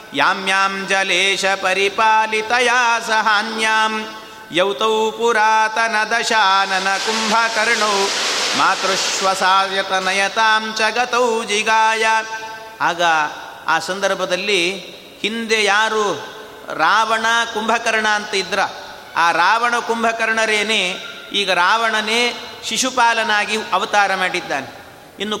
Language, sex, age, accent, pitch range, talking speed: Kannada, male, 30-49, native, 190-225 Hz, 55 wpm